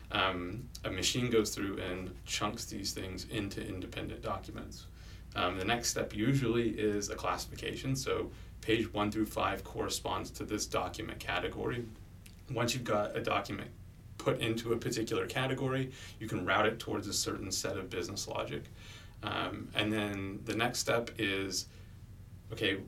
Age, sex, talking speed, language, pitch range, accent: 30-49, male, 155 wpm, English, 95-110 Hz, American